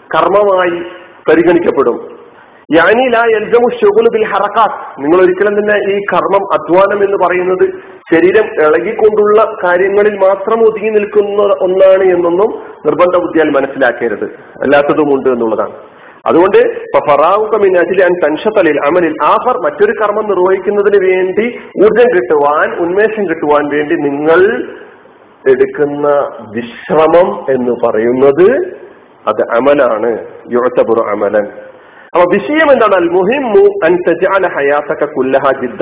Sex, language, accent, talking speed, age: male, Malayalam, native, 90 wpm, 40-59